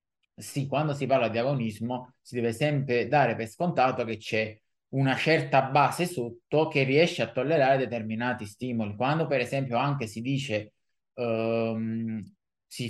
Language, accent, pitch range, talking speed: Italian, native, 120-145 Hz, 145 wpm